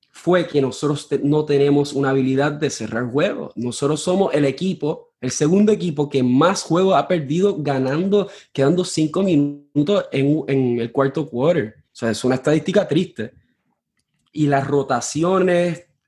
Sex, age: male, 20-39